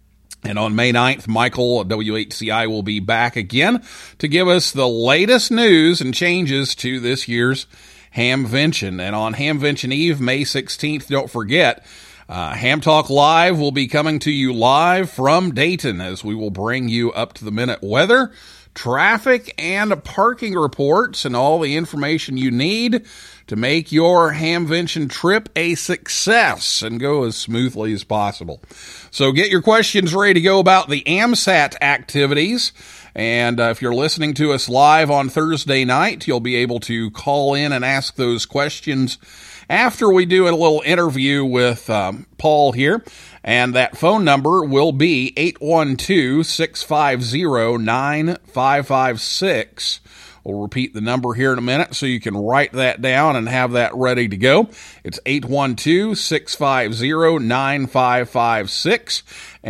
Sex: male